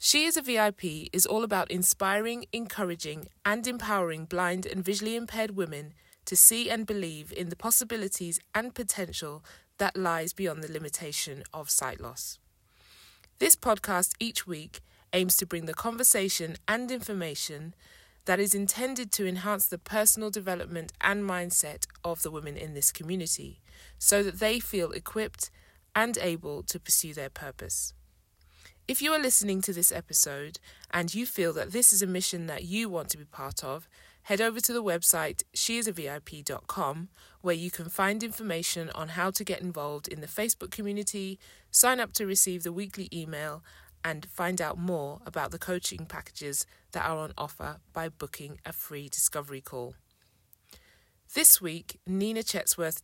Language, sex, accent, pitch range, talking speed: English, female, British, 155-205 Hz, 160 wpm